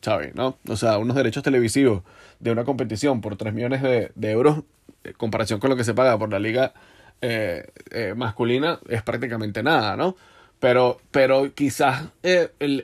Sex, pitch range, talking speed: male, 115-135 Hz, 180 wpm